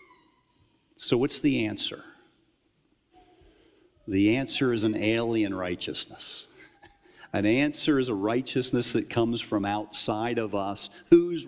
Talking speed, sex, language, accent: 115 wpm, male, English, American